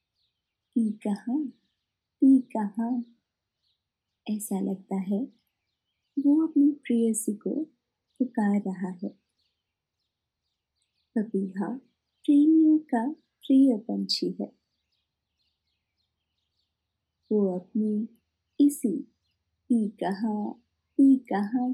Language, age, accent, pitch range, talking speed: Hindi, 50-69, native, 190-260 Hz, 75 wpm